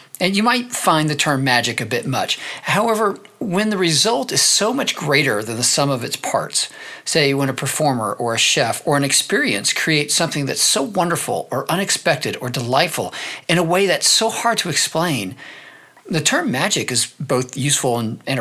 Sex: male